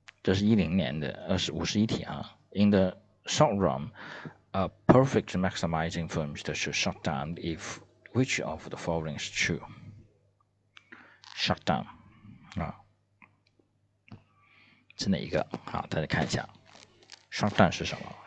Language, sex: Chinese, male